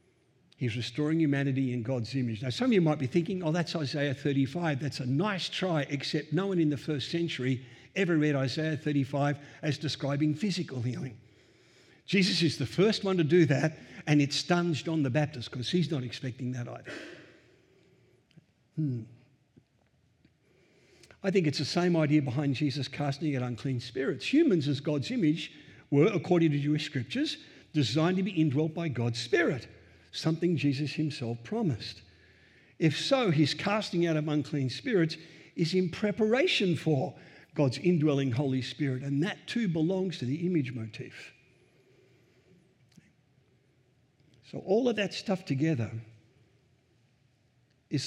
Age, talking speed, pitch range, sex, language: 50-69, 150 wpm, 125-165 Hz, male, English